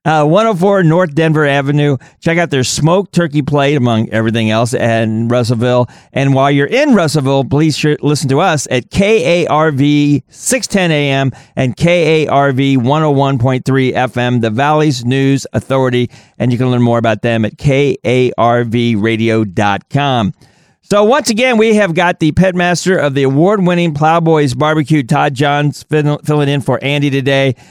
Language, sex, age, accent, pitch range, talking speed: English, male, 40-59, American, 125-155 Hz, 145 wpm